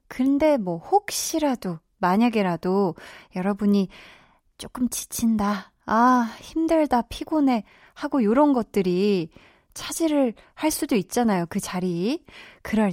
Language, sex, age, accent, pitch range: Korean, female, 20-39, native, 195-255 Hz